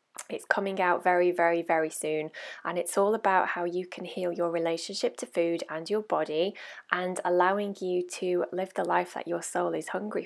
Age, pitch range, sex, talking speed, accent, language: 20-39, 175-205 Hz, female, 200 wpm, British, English